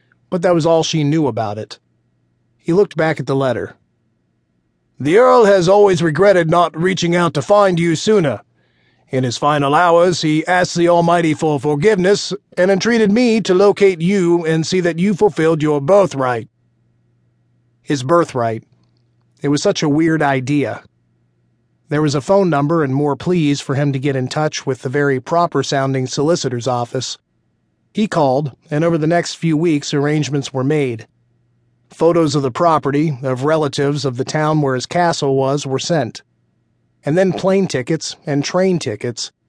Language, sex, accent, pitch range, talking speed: English, male, American, 130-175 Hz, 165 wpm